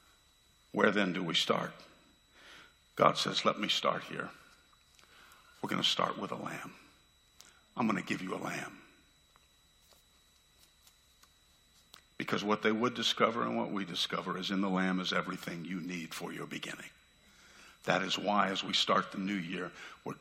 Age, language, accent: 50-69, English, American